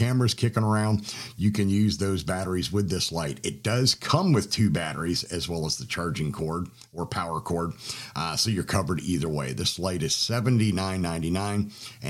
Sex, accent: male, American